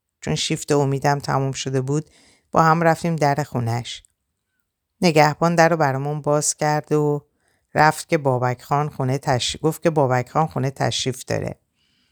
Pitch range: 125-150 Hz